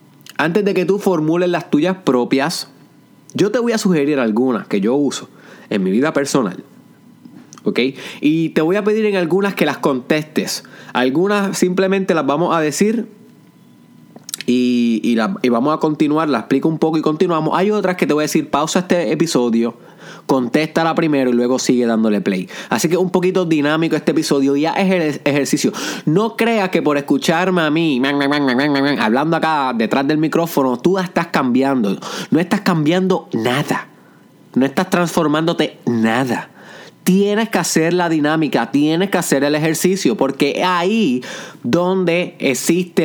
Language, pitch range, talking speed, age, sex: Spanish, 135-185 Hz, 160 wpm, 20-39, male